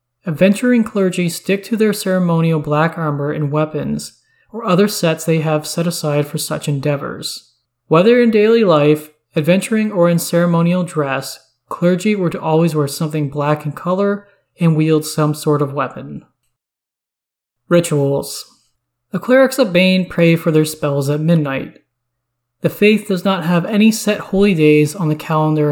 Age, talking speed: 20-39, 155 wpm